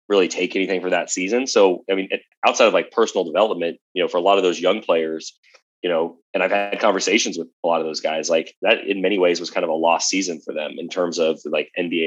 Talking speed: 265 wpm